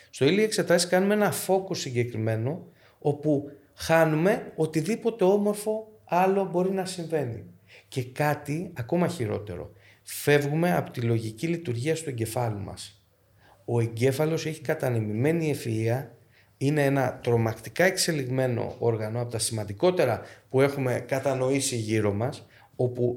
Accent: native